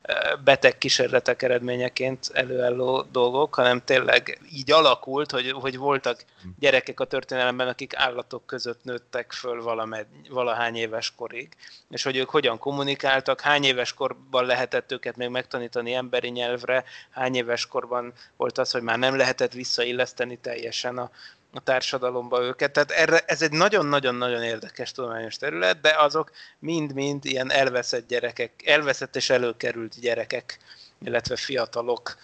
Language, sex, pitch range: Hungarian, male, 120-145 Hz